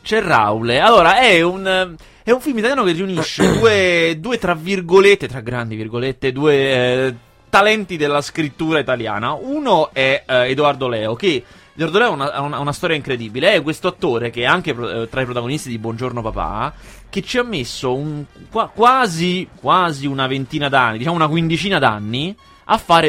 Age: 30-49